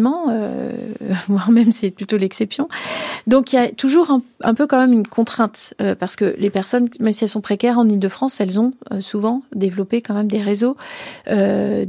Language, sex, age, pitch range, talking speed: French, female, 40-59, 200-245 Hz, 195 wpm